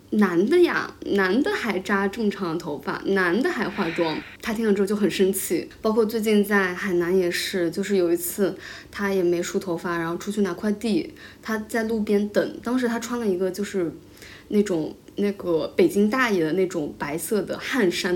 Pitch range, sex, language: 175-210 Hz, female, Chinese